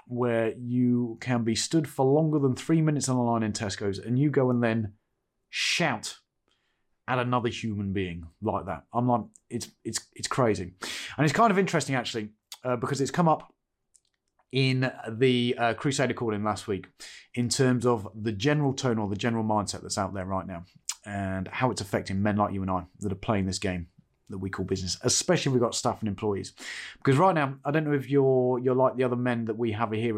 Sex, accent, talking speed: male, British, 215 wpm